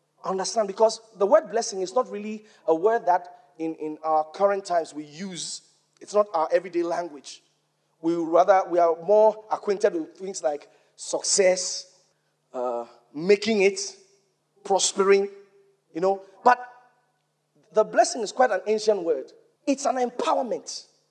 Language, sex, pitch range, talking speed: English, male, 185-265 Hz, 140 wpm